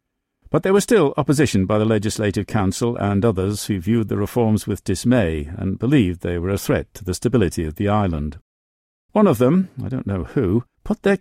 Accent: British